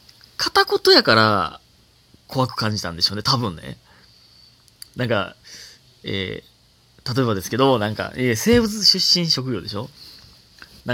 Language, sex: Japanese, male